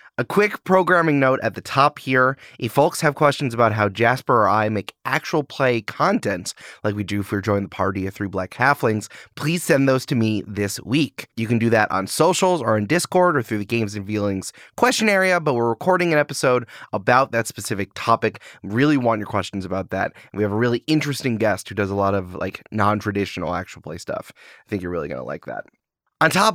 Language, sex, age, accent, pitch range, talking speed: English, male, 20-39, American, 110-175 Hz, 220 wpm